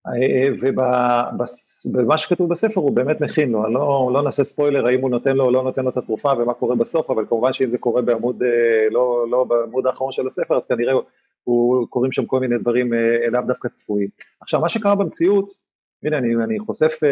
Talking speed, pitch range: 195 wpm, 125-155 Hz